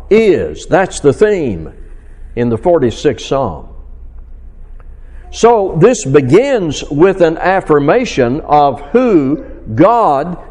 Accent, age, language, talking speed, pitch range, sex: American, 60-79, English, 95 wpm, 115-175 Hz, male